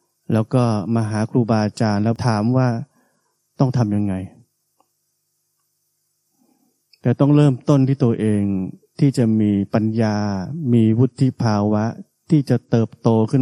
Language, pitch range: Thai, 110-160 Hz